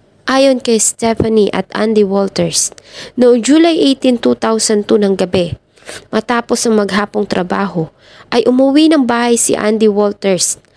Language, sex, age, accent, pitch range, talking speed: English, female, 20-39, Filipino, 185-225 Hz, 130 wpm